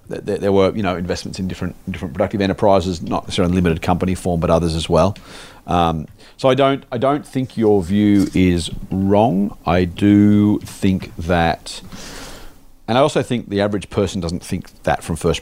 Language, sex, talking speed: English, male, 185 wpm